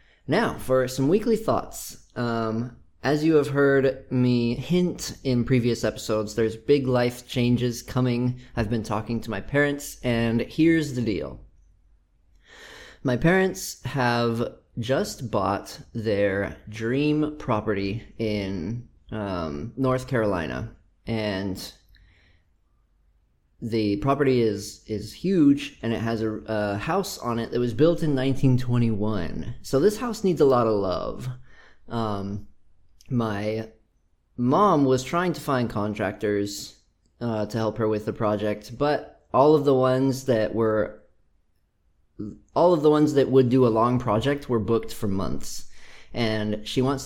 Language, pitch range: English, 105-130 Hz